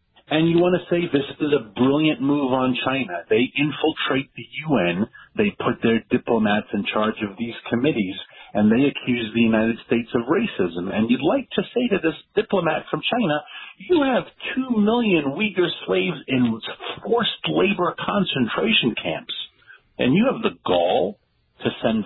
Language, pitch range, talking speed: English, 110-180 Hz, 165 wpm